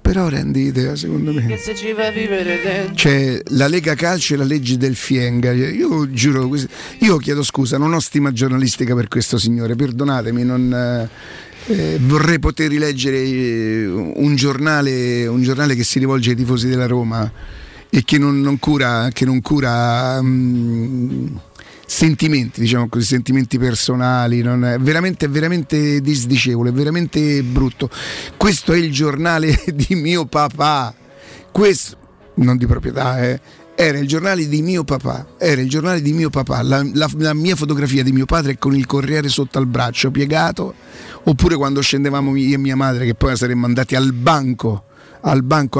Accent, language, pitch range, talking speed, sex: native, Italian, 125-150 Hz, 160 wpm, male